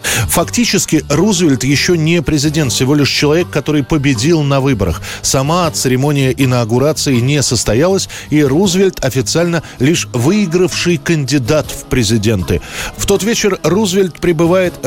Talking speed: 120 wpm